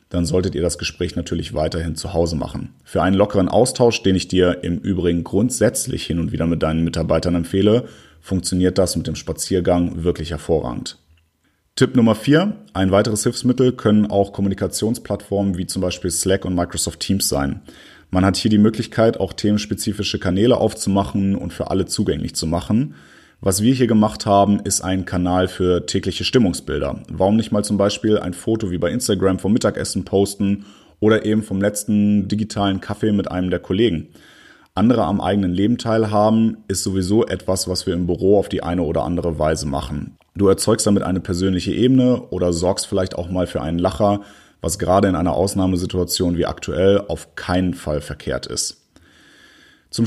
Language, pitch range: German, 85-105 Hz